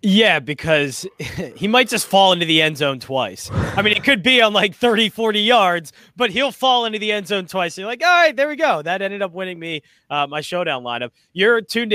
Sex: male